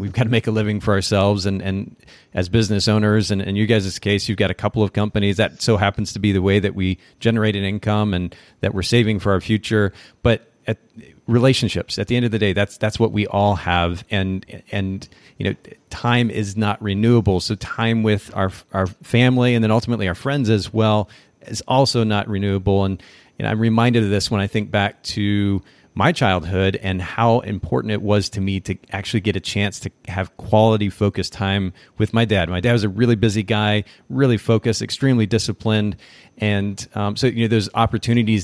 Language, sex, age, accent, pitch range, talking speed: English, male, 40-59, American, 95-115 Hz, 210 wpm